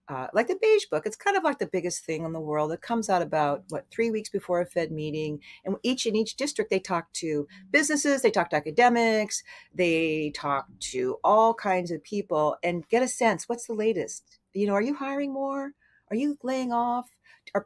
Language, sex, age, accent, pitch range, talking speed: English, female, 50-69, American, 160-230 Hz, 220 wpm